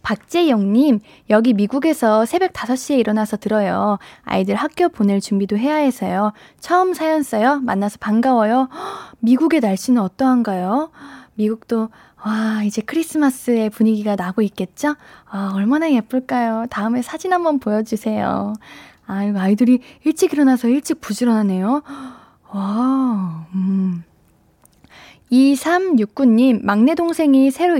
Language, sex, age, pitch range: Korean, female, 10-29, 210-275 Hz